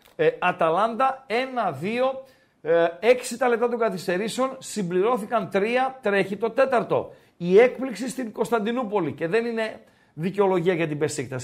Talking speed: 125 wpm